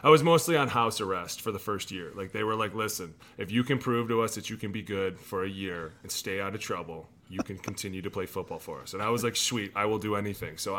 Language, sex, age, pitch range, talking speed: English, male, 30-49, 100-115 Hz, 290 wpm